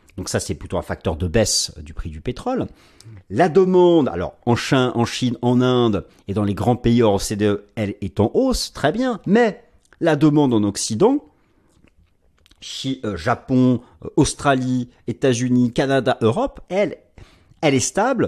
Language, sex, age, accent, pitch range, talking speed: French, male, 40-59, French, 105-155 Hz, 155 wpm